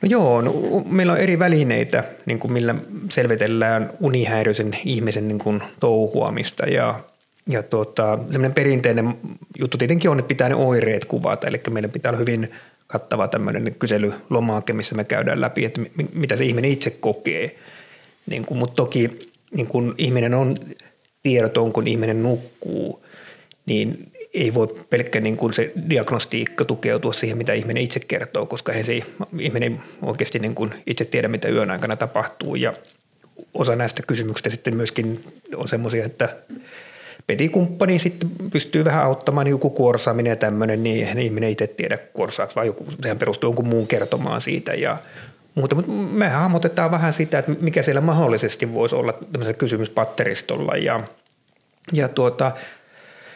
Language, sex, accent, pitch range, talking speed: Finnish, male, native, 115-160 Hz, 150 wpm